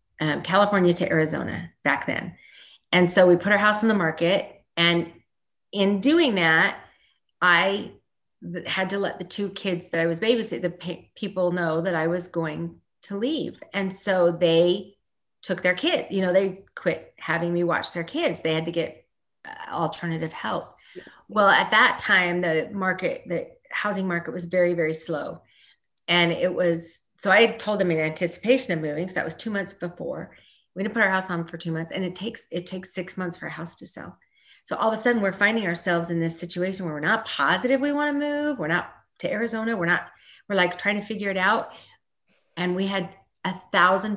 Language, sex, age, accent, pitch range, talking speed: English, female, 40-59, American, 170-210 Hz, 205 wpm